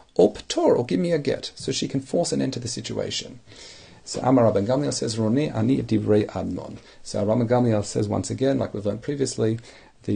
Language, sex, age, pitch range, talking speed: English, male, 40-59, 100-125 Hz, 190 wpm